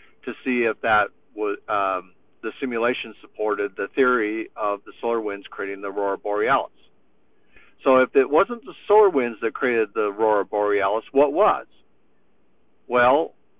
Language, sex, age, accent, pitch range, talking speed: English, male, 60-79, American, 110-135 Hz, 150 wpm